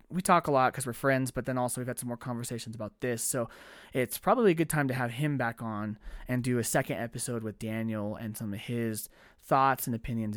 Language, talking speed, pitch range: English, 245 wpm, 120-155 Hz